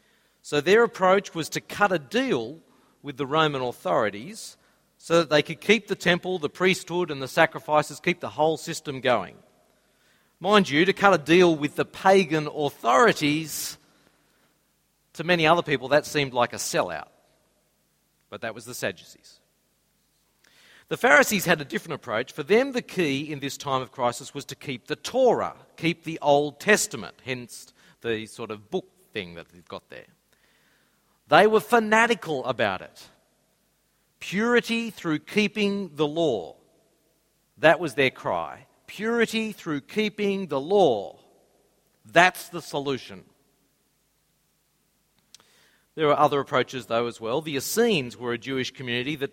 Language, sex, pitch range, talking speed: English, male, 140-195 Hz, 150 wpm